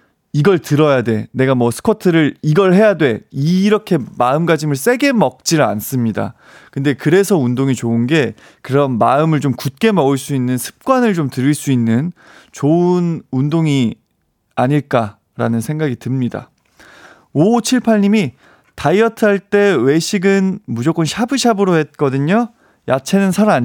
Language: Korean